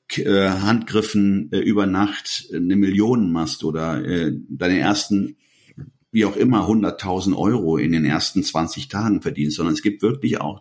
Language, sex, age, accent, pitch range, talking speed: German, male, 50-69, German, 100-140 Hz, 140 wpm